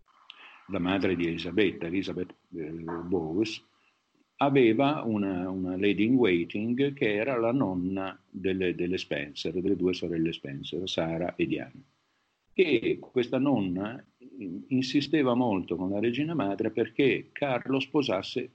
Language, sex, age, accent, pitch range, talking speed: Italian, male, 50-69, native, 90-110 Hz, 125 wpm